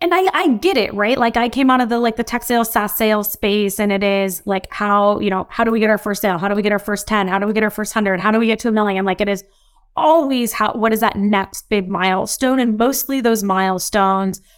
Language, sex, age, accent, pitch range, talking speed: English, female, 20-39, American, 195-240 Hz, 285 wpm